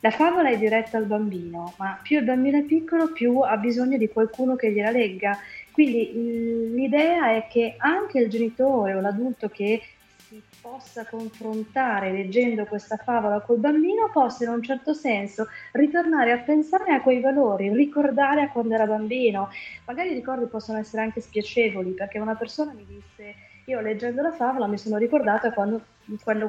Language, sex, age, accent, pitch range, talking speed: Italian, female, 30-49, native, 205-255 Hz, 170 wpm